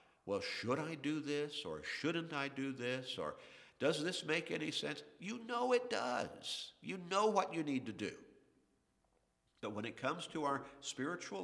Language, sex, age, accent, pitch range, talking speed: English, male, 50-69, American, 100-140 Hz, 180 wpm